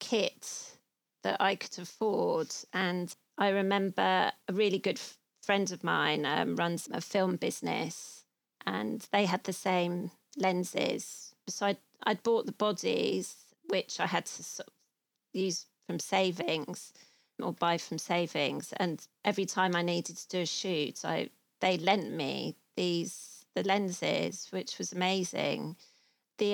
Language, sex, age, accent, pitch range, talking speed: English, female, 30-49, British, 175-210 Hz, 140 wpm